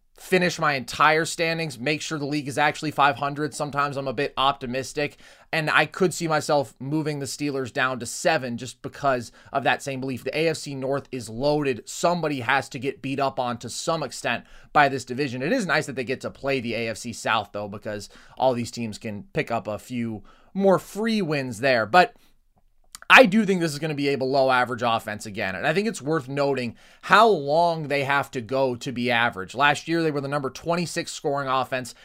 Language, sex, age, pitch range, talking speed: English, male, 20-39, 130-160 Hz, 215 wpm